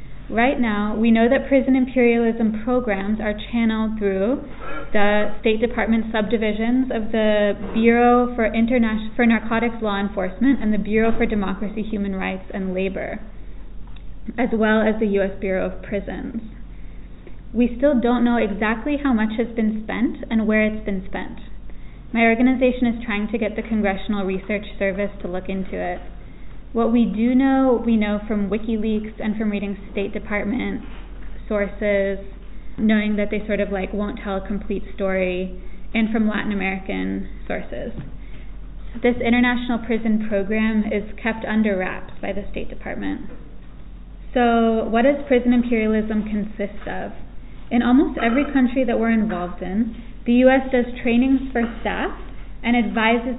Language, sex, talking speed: English, female, 150 wpm